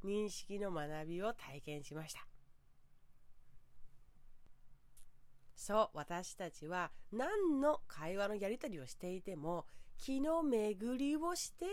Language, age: Japanese, 40-59